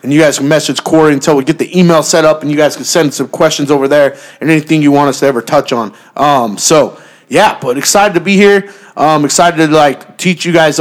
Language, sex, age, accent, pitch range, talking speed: English, male, 20-39, American, 140-165 Hz, 255 wpm